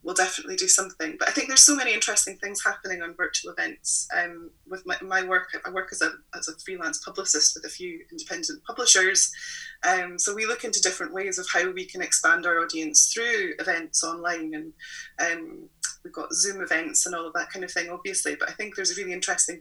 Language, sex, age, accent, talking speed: English, female, 20-39, British, 215 wpm